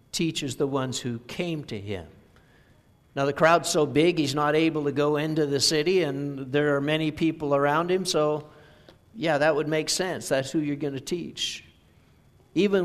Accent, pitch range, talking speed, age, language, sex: American, 130-175 Hz, 185 wpm, 60-79, English, male